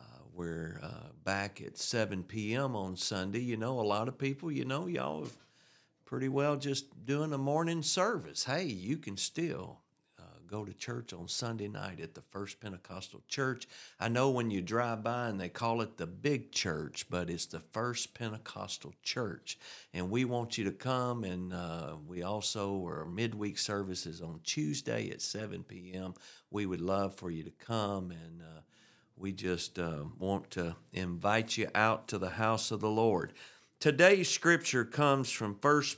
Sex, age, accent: male, 50-69, American